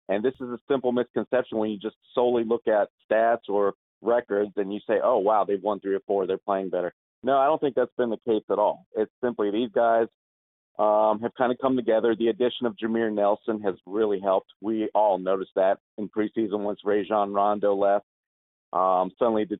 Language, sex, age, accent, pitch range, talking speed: English, male, 40-59, American, 100-115 Hz, 210 wpm